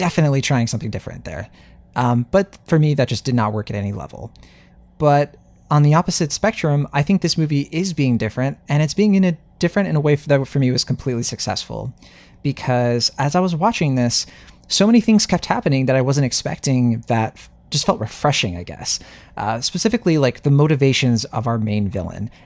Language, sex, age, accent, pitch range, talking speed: English, male, 30-49, American, 120-150 Hz, 200 wpm